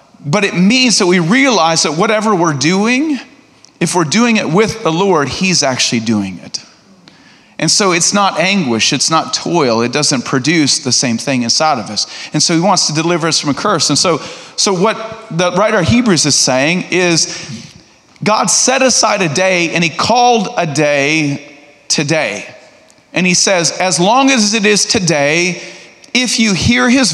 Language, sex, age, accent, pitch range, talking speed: English, male, 30-49, American, 145-195 Hz, 185 wpm